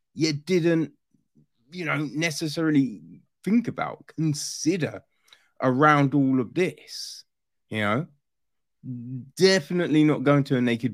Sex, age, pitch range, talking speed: male, 20-39, 130-175 Hz, 110 wpm